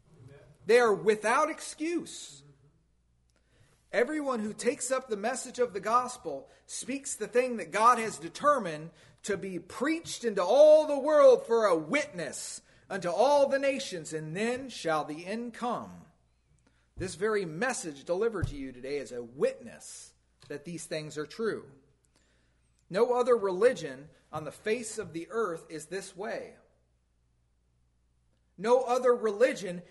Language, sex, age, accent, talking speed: English, male, 40-59, American, 140 wpm